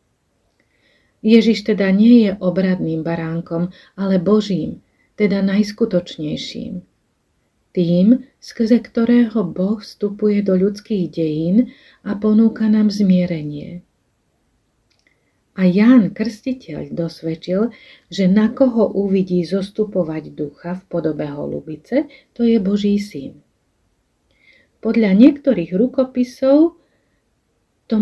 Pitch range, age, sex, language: 175-225 Hz, 40-59, female, Slovak